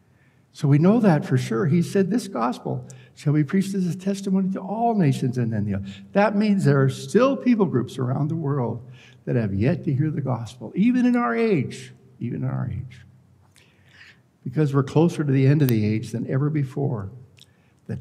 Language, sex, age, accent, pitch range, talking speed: English, male, 60-79, American, 125-165 Hz, 205 wpm